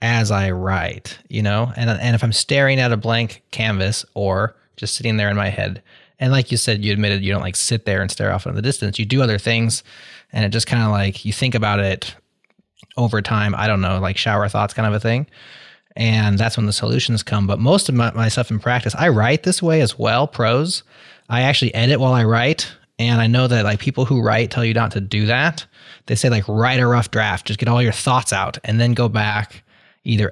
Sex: male